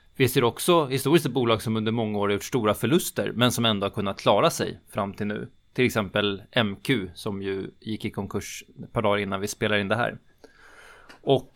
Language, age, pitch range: Swedish, 20-39, 105-130 Hz